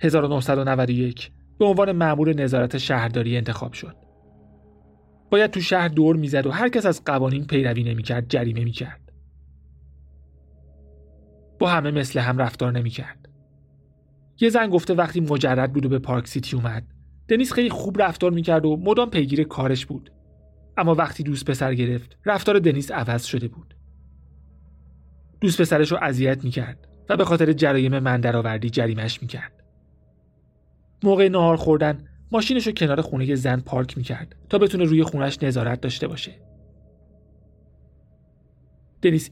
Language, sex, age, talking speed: Persian, male, 30-49, 140 wpm